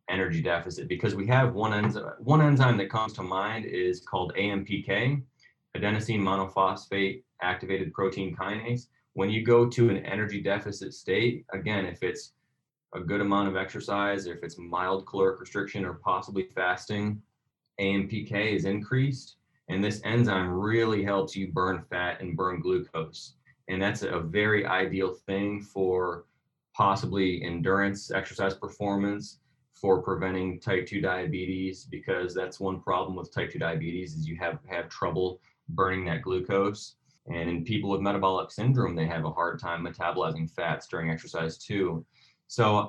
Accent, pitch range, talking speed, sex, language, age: American, 90-110 Hz, 150 wpm, male, English, 20-39